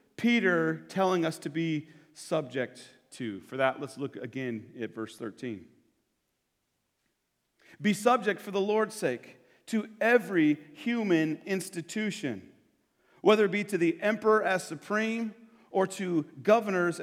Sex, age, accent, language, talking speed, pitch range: male, 40-59, American, English, 125 wpm, 155-215 Hz